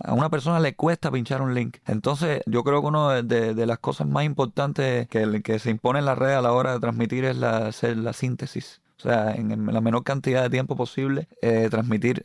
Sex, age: male, 30-49